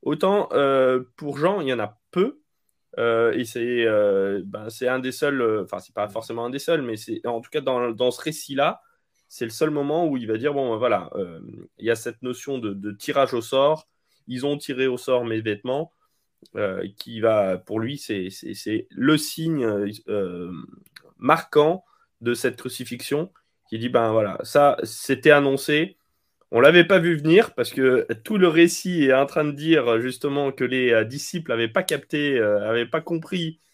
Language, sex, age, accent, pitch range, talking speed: French, male, 20-39, French, 115-155 Hz, 200 wpm